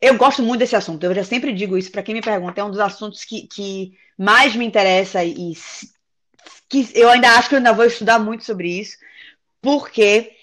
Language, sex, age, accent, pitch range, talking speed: Portuguese, female, 20-39, Brazilian, 195-285 Hz, 205 wpm